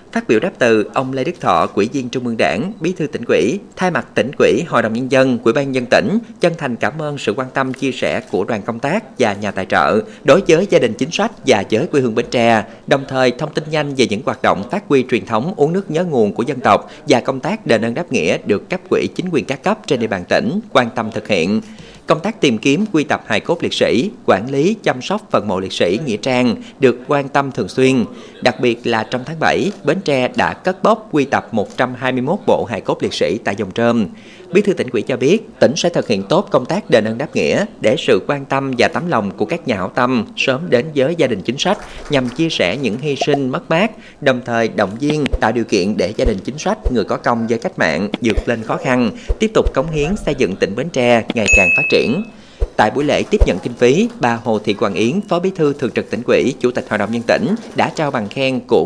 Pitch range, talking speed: 120-165 Hz, 260 wpm